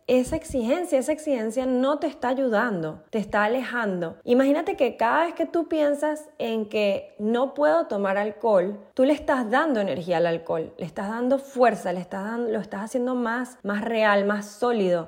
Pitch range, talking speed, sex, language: 210-280 Hz, 185 wpm, female, Spanish